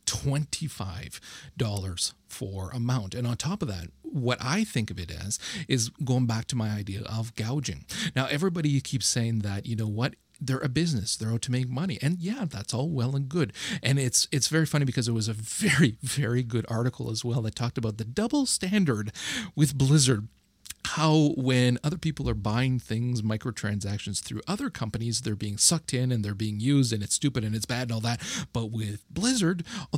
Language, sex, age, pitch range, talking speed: English, male, 40-59, 110-150 Hz, 200 wpm